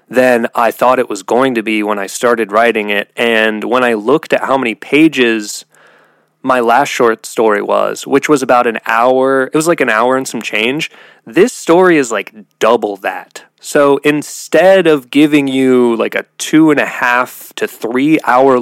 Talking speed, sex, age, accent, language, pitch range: 190 wpm, male, 20-39, American, English, 110-145 Hz